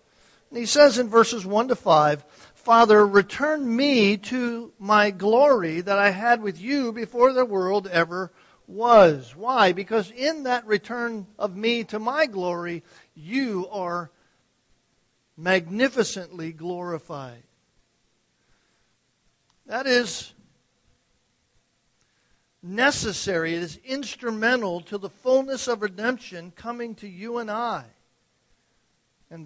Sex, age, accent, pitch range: male, 50-69, American, 165-230 Hz